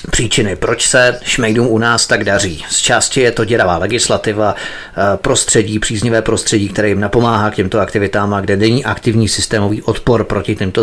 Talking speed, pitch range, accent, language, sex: 165 wpm, 105-120 Hz, native, Czech, male